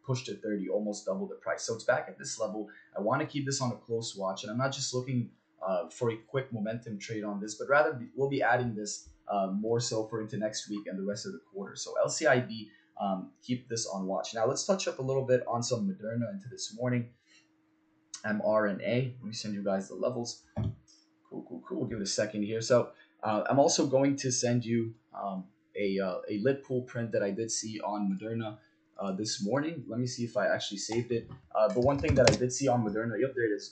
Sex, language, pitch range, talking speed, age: male, English, 105-130 Hz, 240 wpm, 20-39